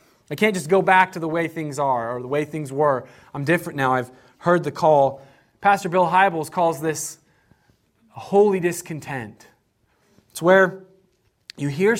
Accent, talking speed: American, 170 wpm